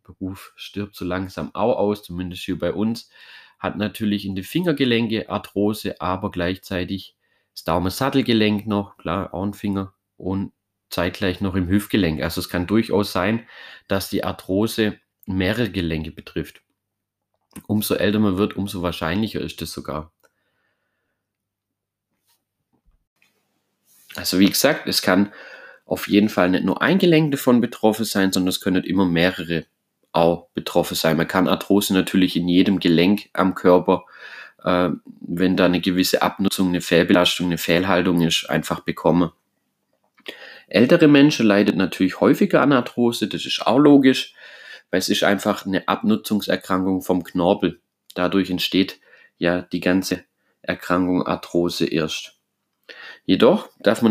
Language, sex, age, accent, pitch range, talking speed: German, male, 30-49, German, 90-105 Hz, 140 wpm